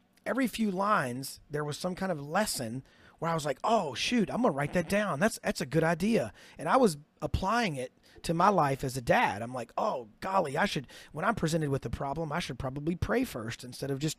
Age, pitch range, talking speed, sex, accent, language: 30-49, 150-195 Hz, 235 wpm, male, American, English